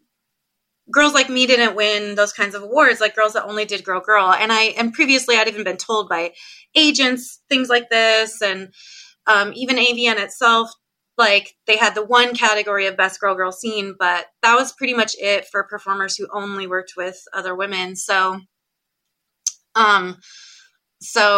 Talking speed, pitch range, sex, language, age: 175 wpm, 205-260 Hz, female, English, 20-39